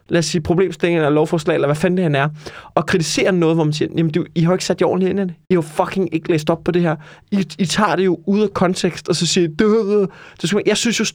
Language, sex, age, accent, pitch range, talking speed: Danish, male, 20-39, native, 150-185 Hz, 295 wpm